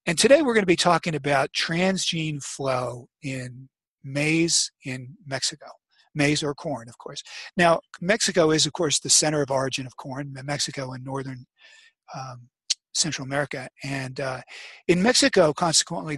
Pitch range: 135-170 Hz